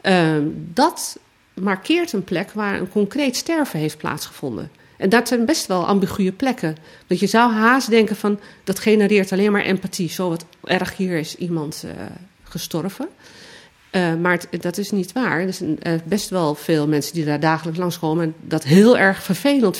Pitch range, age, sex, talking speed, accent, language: 160-215 Hz, 40-59, female, 180 wpm, Dutch, Dutch